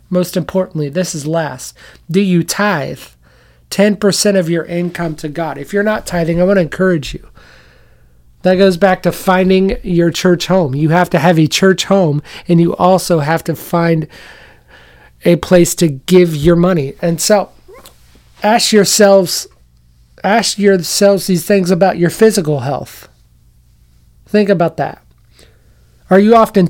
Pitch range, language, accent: 140-195 Hz, English, American